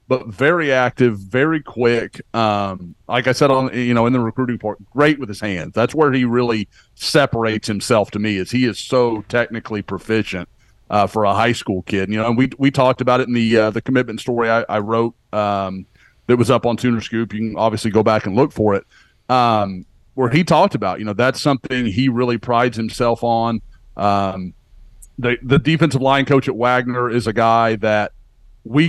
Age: 40-59